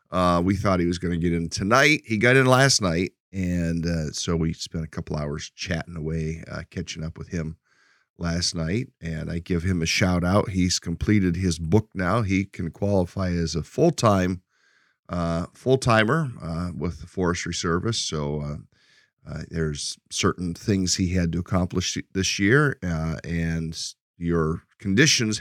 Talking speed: 170 wpm